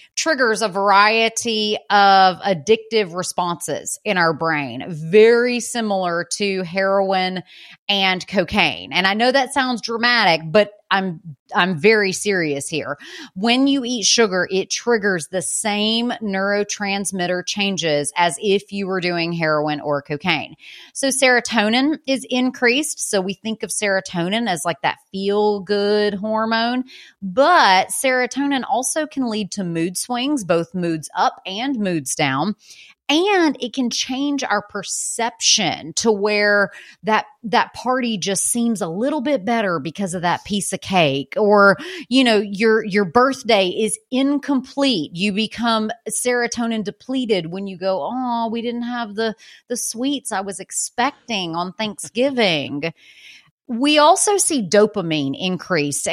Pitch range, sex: 185-240 Hz, female